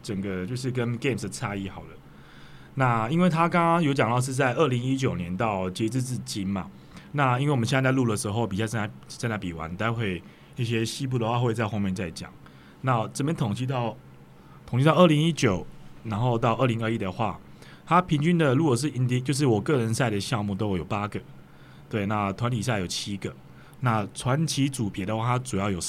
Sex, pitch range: male, 95-130 Hz